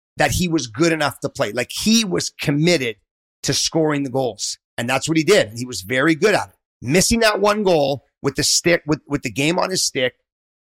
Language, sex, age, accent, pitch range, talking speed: English, male, 40-59, American, 135-180 Hz, 225 wpm